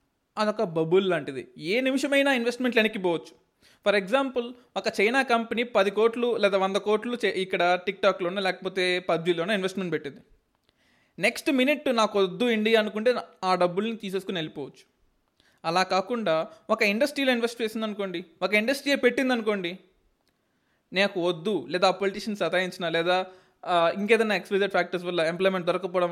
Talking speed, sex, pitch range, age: 130 wpm, male, 190-240 Hz, 20-39